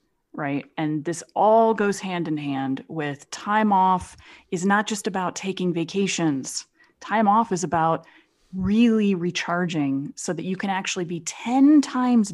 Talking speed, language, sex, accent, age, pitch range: 150 wpm, English, female, American, 30-49, 155-205 Hz